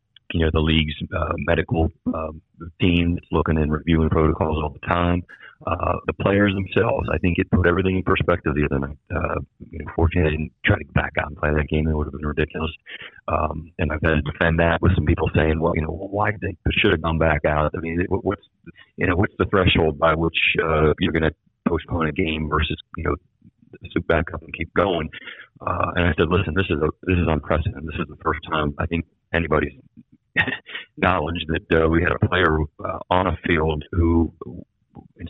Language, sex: English, male